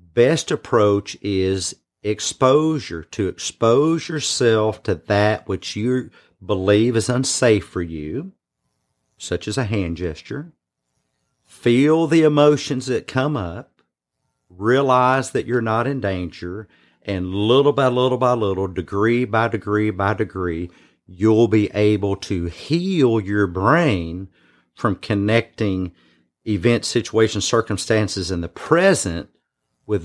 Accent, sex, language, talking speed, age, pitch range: American, male, English, 120 wpm, 40-59, 95-120 Hz